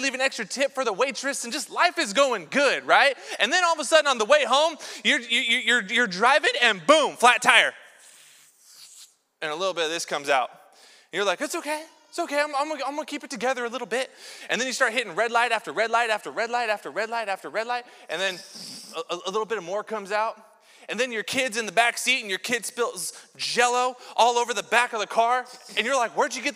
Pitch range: 220-265 Hz